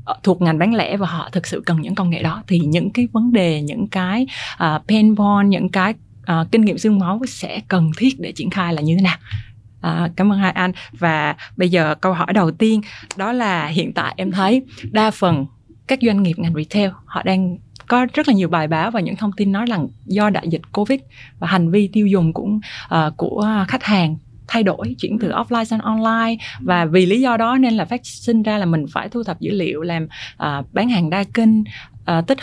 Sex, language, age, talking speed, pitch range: female, Vietnamese, 20-39, 235 wpm, 165-220 Hz